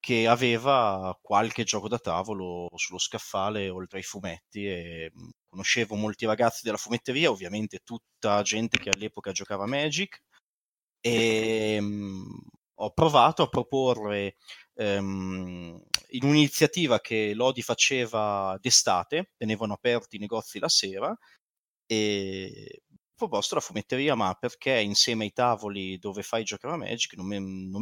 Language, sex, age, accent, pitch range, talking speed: Italian, male, 30-49, native, 100-120 Hz, 130 wpm